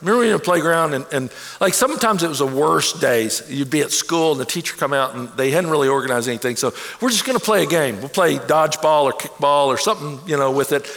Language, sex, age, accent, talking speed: English, male, 60-79, American, 270 wpm